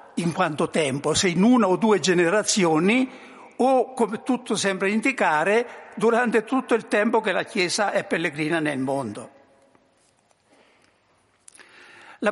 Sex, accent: male, native